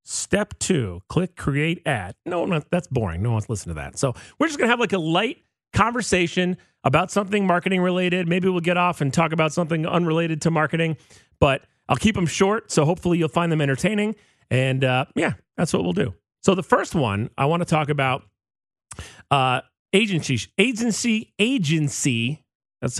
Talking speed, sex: 185 wpm, male